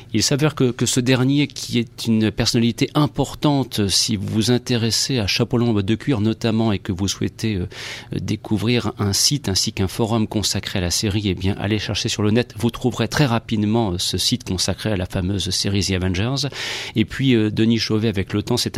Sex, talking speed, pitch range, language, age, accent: male, 210 wpm, 110-130 Hz, French, 40-59, French